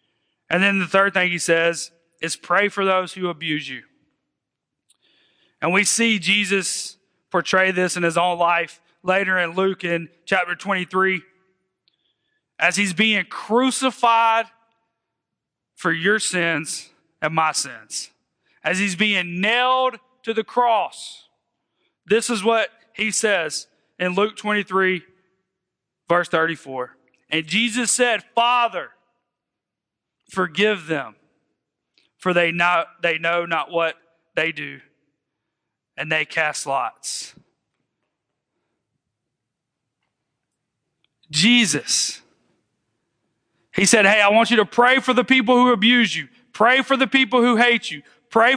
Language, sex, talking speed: English, male, 120 wpm